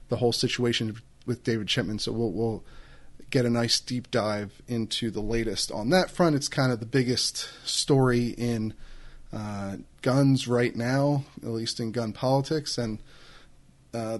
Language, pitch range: English, 115-145 Hz